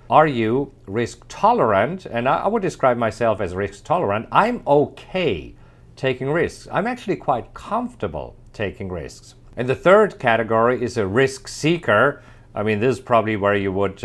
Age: 50-69